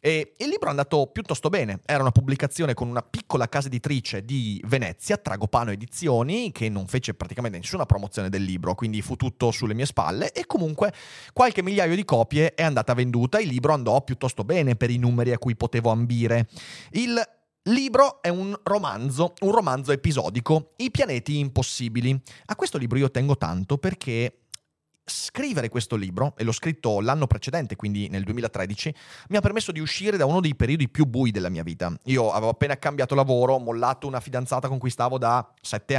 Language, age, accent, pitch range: Italian, 30-49, native, 115-155 Hz